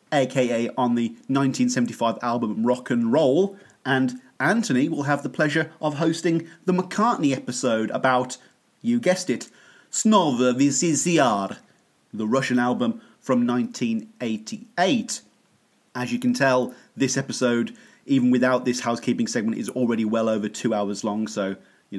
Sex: male